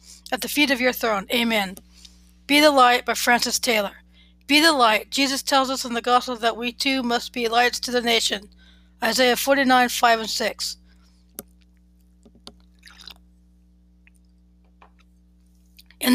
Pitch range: 205-260 Hz